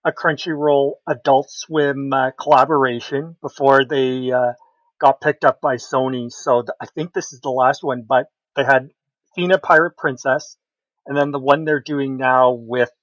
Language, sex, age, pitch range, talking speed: English, male, 40-59, 130-150 Hz, 170 wpm